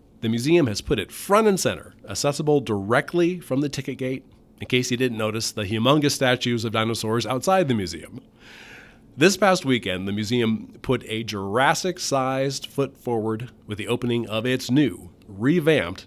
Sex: male